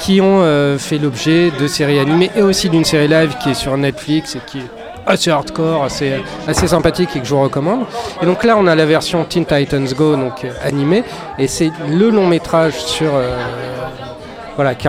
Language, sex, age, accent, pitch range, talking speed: French, male, 30-49, French, 145-180 Hz, 205 wpm